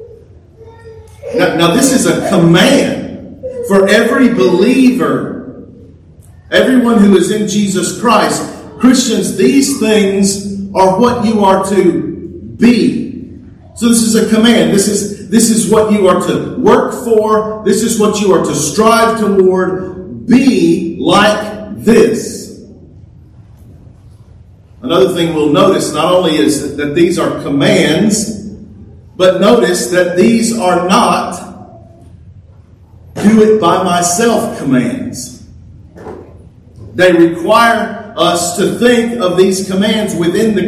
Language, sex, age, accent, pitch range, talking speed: English, male, 40-59, American, 160-225 Hz, 120 wpm